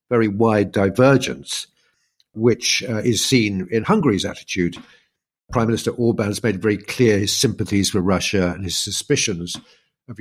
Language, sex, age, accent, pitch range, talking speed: English, male, 50-69, British, 95-115 Hz, 145 wpm